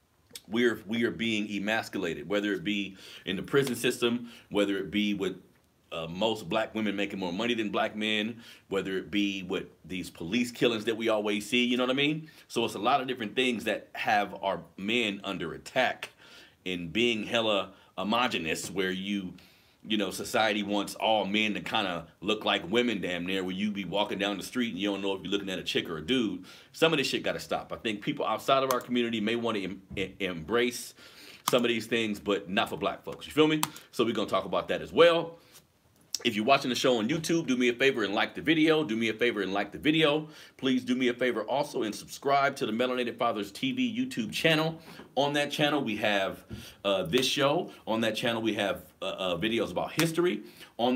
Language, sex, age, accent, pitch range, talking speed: English, male, 40-59, American, 100-130 Hz, 225 wpm